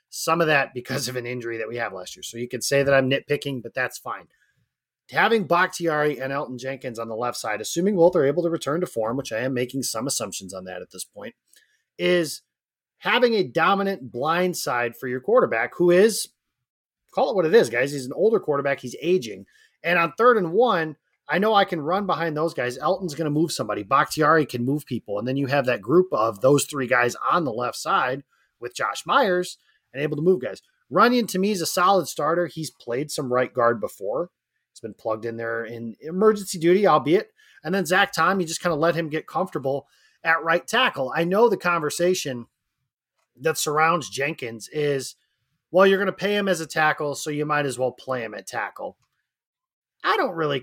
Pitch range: 130-180 Hz